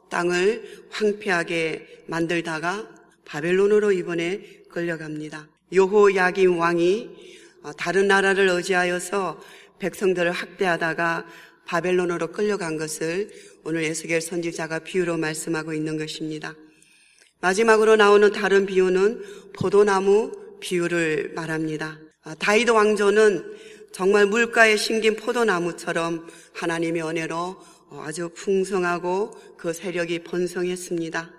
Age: 40-59